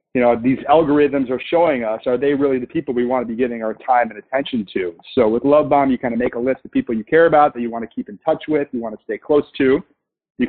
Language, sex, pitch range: English, male, 125-150 Hz